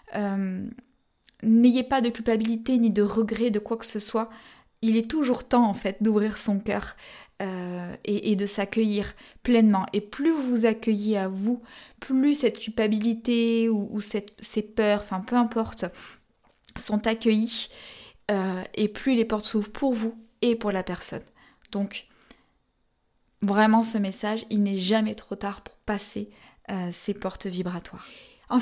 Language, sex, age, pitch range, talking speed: French, female, 20-39, 205-235 Hz, 155 wpm